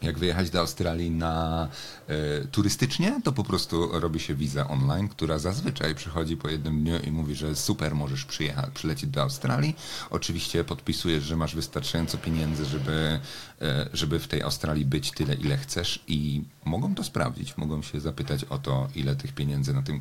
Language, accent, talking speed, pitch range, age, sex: Polish, native, 175 wpm, 70-95 Hz, 40-59, male